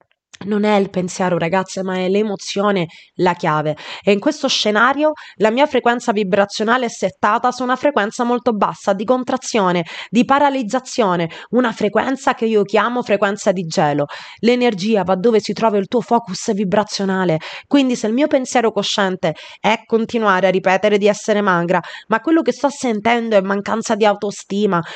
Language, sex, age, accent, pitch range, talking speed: Italian, female, 20-39, native, 190-240 Hz, 165 wpm